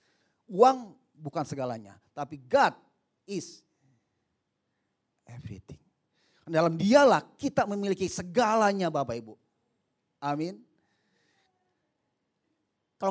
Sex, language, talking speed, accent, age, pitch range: male, Indonesian, 75 wpm, native, 30-49, 145-185 Hz